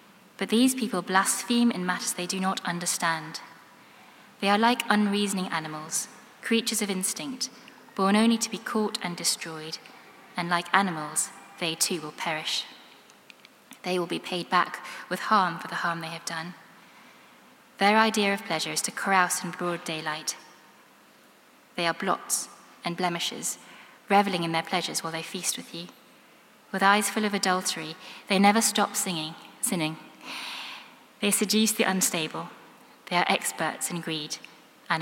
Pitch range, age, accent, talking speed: 170-215 Hz, 20-39, British, 155 wpm